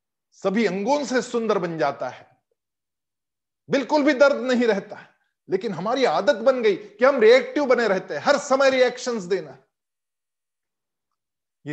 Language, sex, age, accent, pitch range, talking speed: Hindi, male, 50-69, native, 185-255 Hz, 145 wpm